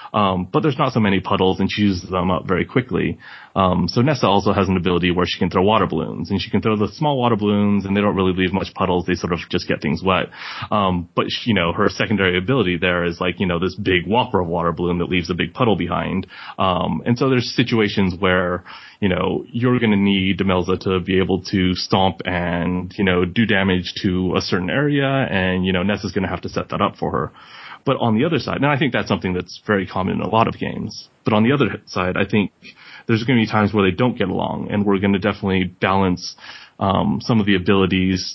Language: English